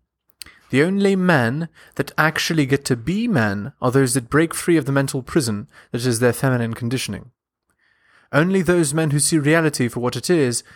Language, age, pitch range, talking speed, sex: English, 20-39, 120-155 Hz, 185 wpm, male